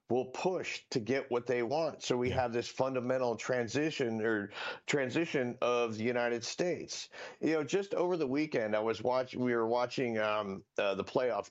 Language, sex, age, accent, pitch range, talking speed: English, male, 50-69, American, 105-125 Hz, 180 wpm